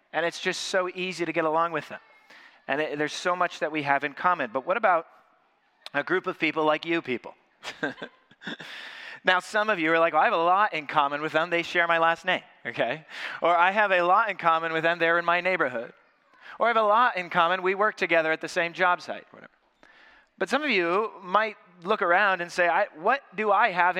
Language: English